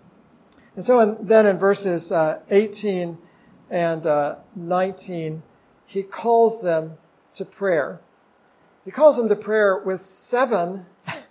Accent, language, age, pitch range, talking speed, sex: American, English, 50-69, 165-210 Hz, 120 wpm, male